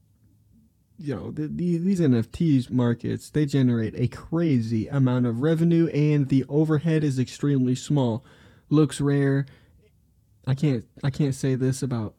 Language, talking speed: English, 135 wpm